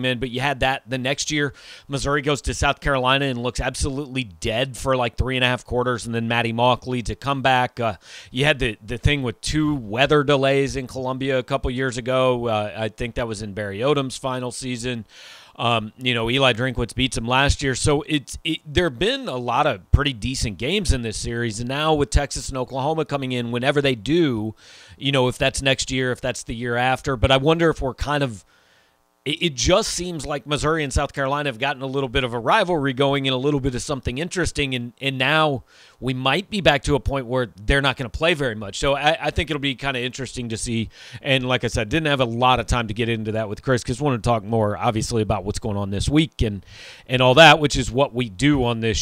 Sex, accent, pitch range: male, American, 120-140 Hz